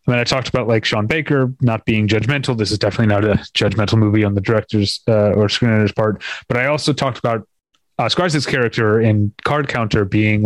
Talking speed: 220 wpm